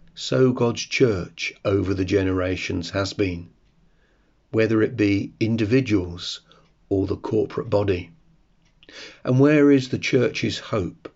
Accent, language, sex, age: British, English, male, 40-59